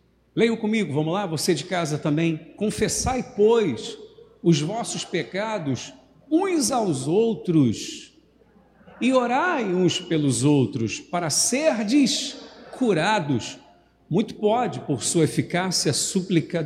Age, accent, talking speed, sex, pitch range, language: 50-69, Brazilian, 110 wpm, male, 155-220 Hz, Portuguese